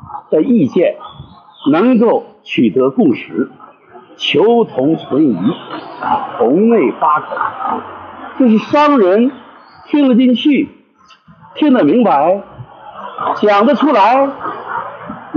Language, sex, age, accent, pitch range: Chinese, male, 60-79, native, 230-295 Hz